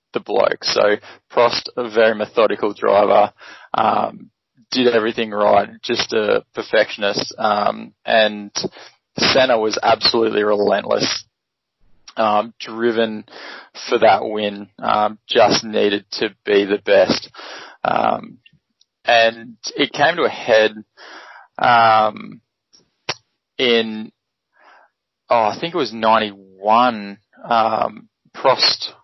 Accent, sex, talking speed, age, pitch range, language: Australian, male, 105 wpm, 20-39, 105-120 Hz, English